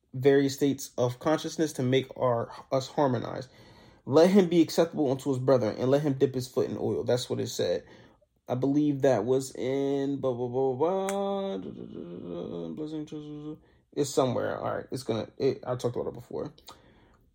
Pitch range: 130-165 Hz